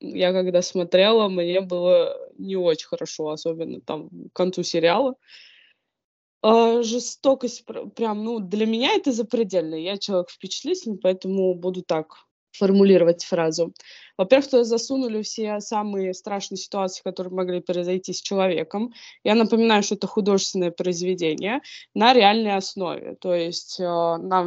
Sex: female